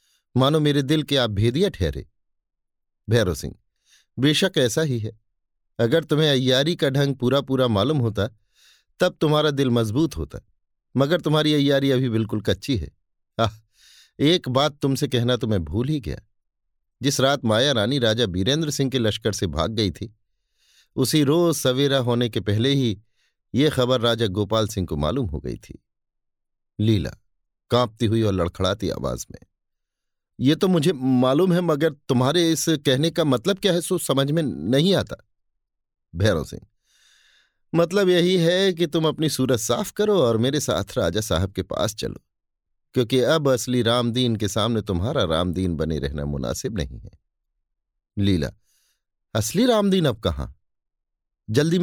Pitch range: 105-150 Hz